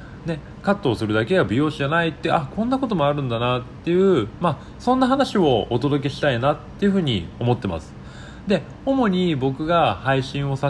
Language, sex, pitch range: Japanese, male, 100-150 Hz